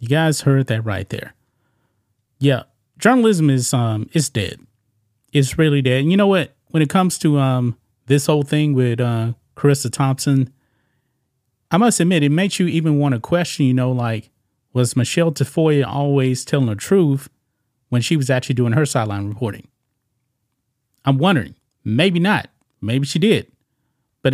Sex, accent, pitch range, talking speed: male, American, 120-150 Hz, 165 wpm